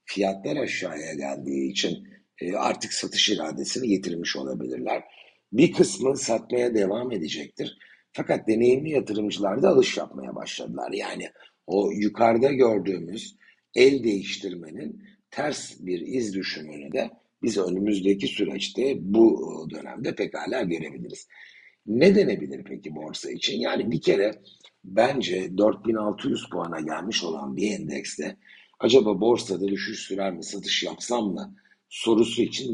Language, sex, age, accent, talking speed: Turkish, male, 60-79, native, 115 wpm